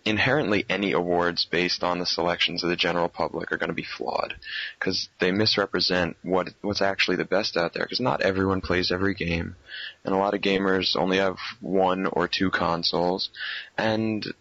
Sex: male